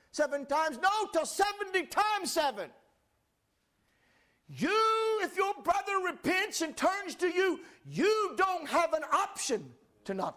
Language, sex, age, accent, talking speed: English, male, 50-69, American, 135 wpm